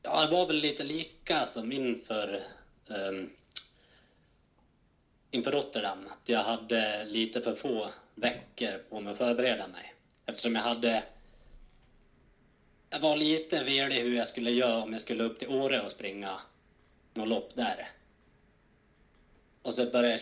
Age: 30-49